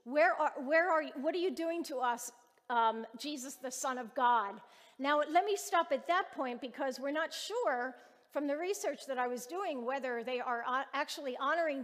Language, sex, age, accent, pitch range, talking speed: English, female, 50-69, American, 245-320 Hz, 205 wpm